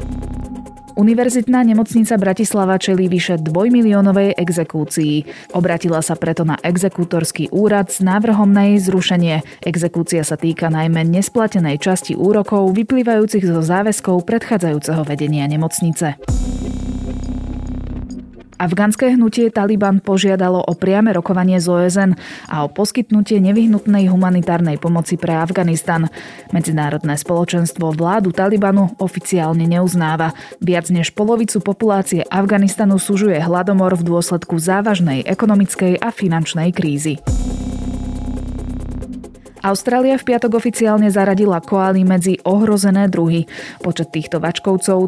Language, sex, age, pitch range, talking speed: Slovak, female, 20-39, 160-200 Hz, 110 wpm